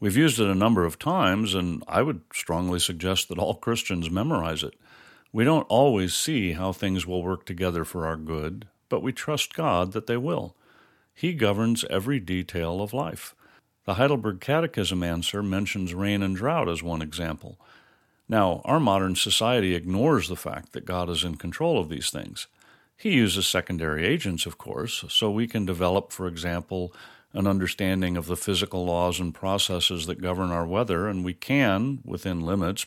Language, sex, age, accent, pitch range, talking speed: English, male, 50-69, American, 90-115 Hz, 175 wpm